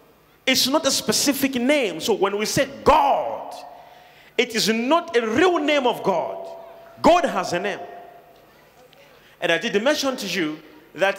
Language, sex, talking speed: English, male, 155 wpm